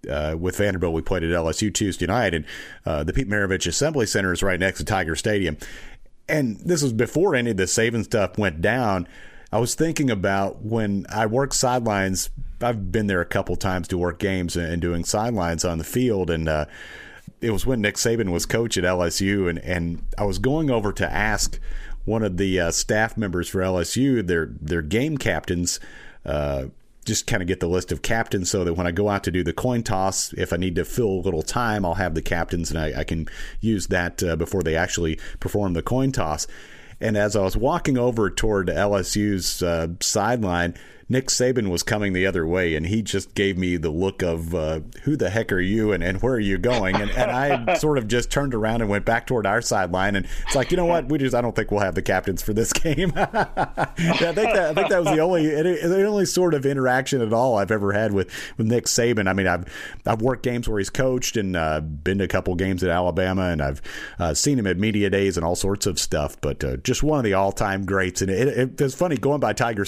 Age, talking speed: 40-59, 230 wpm